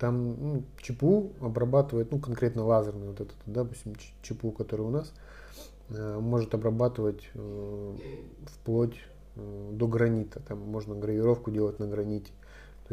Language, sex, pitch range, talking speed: Russian, male, 105-120 Hz, 140 wpm